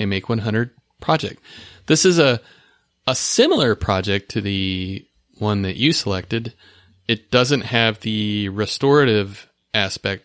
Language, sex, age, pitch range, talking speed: English, male, 30-49, 100-120 Hz, 125 wpm